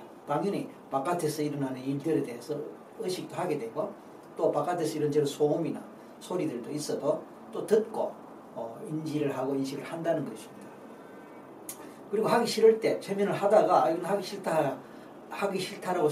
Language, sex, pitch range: Korean, male, 140-185 Hz